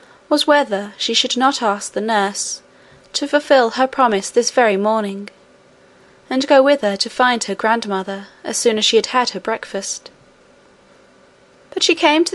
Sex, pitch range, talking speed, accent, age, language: female, 205-265 Hz, 170 wpm, British, 20-39, English